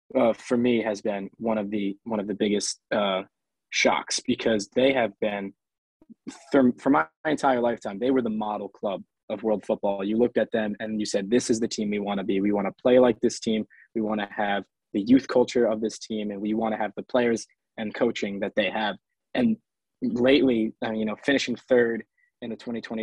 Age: 20-39